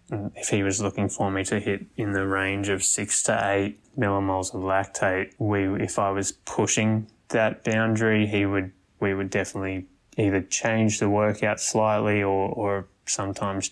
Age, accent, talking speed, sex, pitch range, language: 20-39, Australian, 165 wpm, male, 95-105 Hz, Swedish